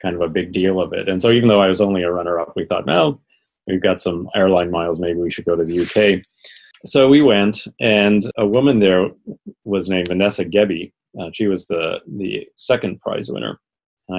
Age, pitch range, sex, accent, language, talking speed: 30-49, 85-105 Hz, male, American, English, 220 wpm